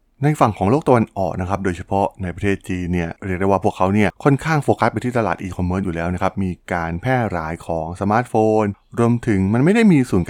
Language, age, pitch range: Thai, 20-39, 90-115 Hz